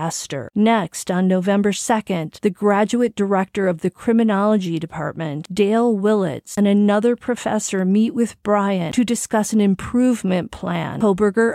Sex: female